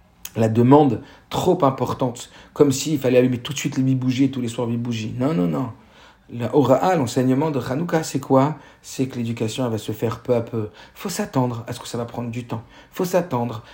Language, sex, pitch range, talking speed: French, male, 120-145 Hz, 220 wpm